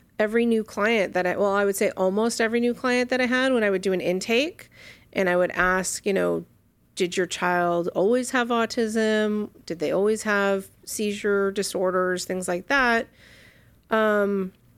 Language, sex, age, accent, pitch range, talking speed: English, female, 30-49, American, 180-215 Hz, 180 wpm